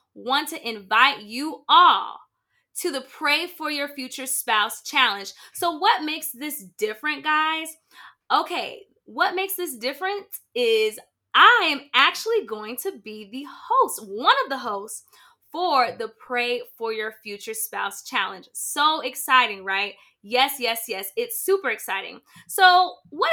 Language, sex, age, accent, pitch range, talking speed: English, female, 20-39, American, 240-345 Hz, 145 wpm